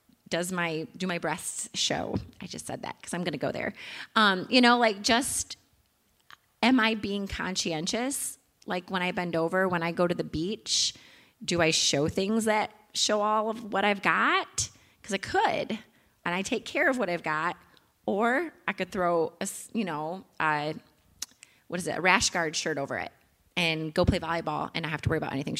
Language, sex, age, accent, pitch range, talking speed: English, female, 30-49, American, 165-210 Hz, 200 wpm